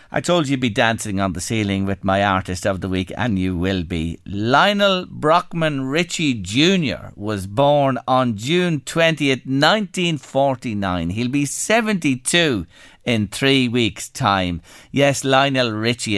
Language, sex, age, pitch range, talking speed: English, male, 50-69, 110-160 Hz, 145 wpm